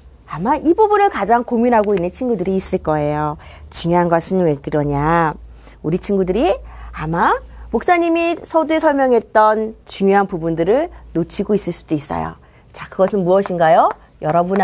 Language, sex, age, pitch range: Korean, female, 40-59, 175-280 Hz